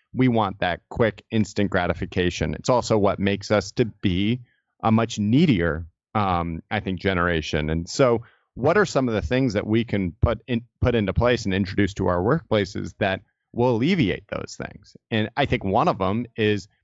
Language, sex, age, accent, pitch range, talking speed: English, male, 30-49, American, 95-115 Hz, 190 wpm